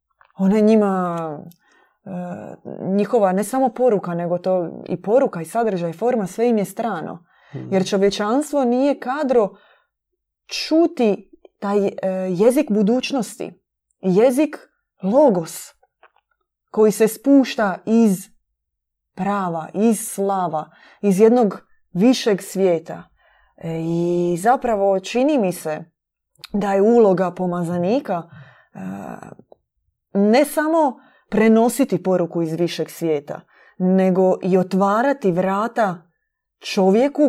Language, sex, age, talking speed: Croatian, female, 20-39, 100 wpm